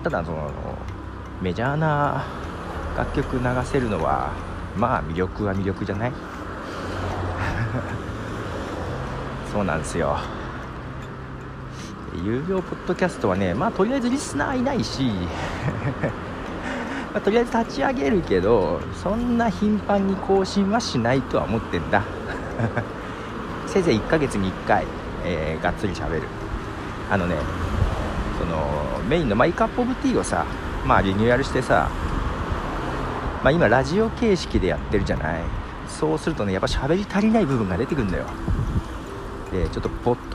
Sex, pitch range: male, 85-145 Hz